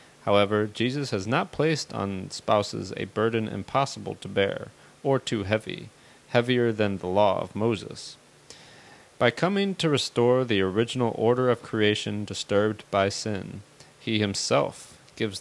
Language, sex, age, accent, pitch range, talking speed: English, male, 30-49, American, 105-130 Hz, 140 wpm